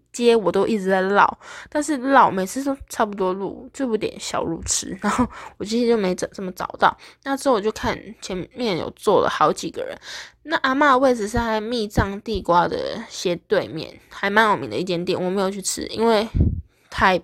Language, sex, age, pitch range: Chinese, female, 10-29, 180-245 Hz